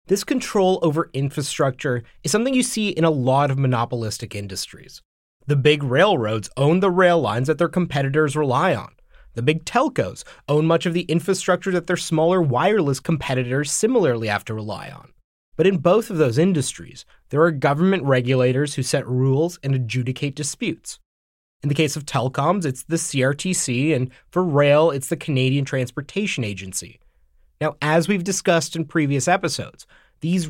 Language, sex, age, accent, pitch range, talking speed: English, male, 30-49, American, 135-175 Hz, 165 wpm